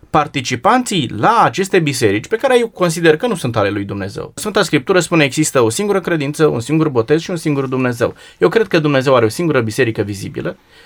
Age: 20-39